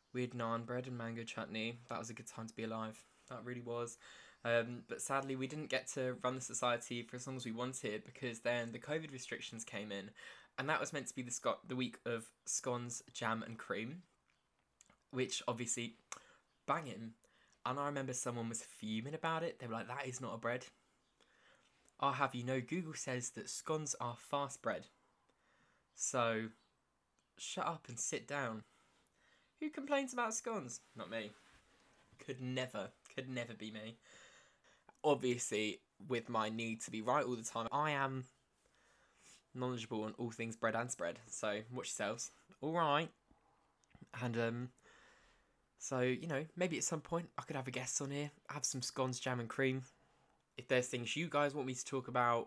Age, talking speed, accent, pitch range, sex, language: 10-29, 180 wpm, British, 115-135 Hz, male, English